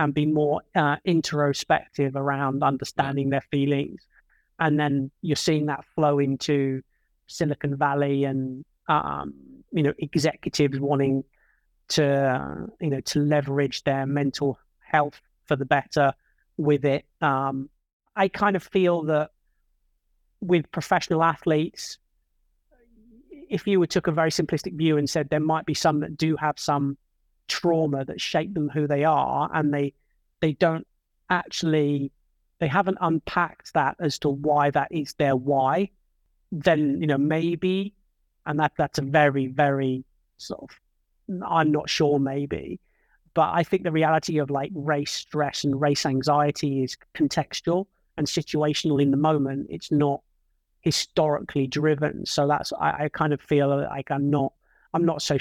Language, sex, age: English, male, 30-49